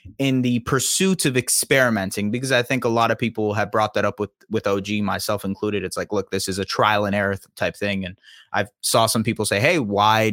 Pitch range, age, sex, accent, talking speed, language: 110-130 Hz, 20-39, male, American, 240 wpm, English